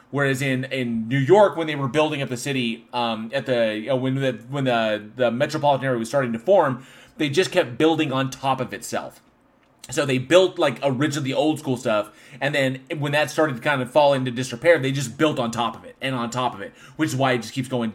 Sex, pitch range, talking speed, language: male, 120-150 Hz, 245 wpm, English